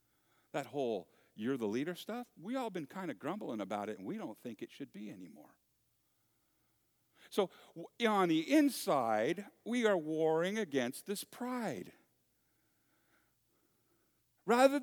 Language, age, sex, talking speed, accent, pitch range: English, 50-69, male, 135 wpm, American, 180-245 Hz